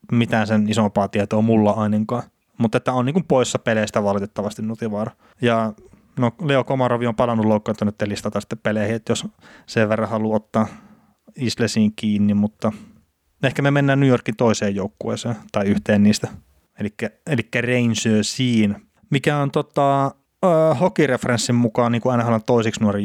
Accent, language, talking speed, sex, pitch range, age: native, Finnish, 150 wpm, male, 105-125 Hz, 20-39